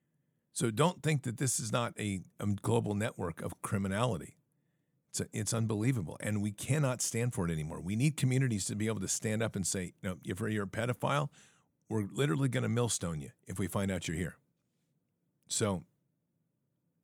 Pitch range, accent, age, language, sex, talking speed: 95-140 Hz, American, 50-69, English, male, 185 wpm